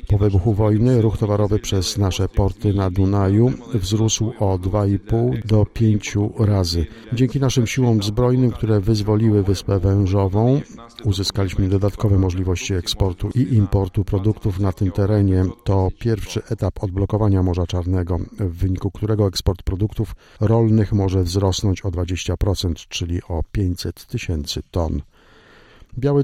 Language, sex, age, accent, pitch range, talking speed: Polish, male, 50-69, native, 95-115 Hz, 130 wpm